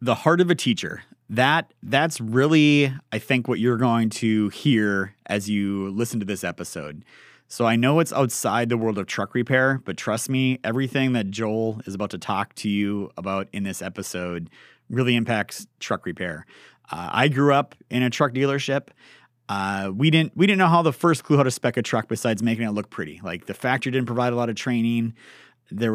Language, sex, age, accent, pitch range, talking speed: English, male, 30-49, American, 110-130 Hz, 200 wpm